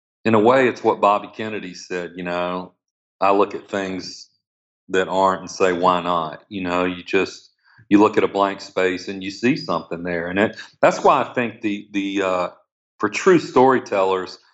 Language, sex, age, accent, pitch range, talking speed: English, male, 40-59, American, 95-120 Hz, 195 wpm